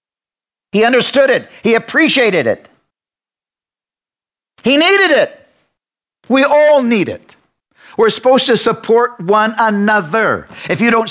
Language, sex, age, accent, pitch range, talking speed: English, male, 60-79, American, 195-235 Hz, 120 wpm